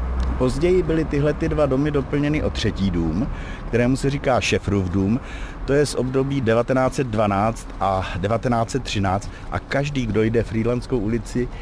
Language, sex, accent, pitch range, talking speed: Czech, male, native, 110-135 Hz, 150 wpm